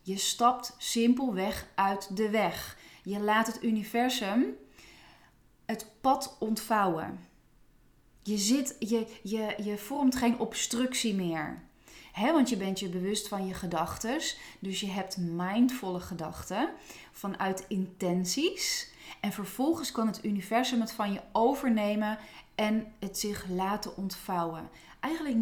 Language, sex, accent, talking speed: Dutch, female, Dutch, 115 wpm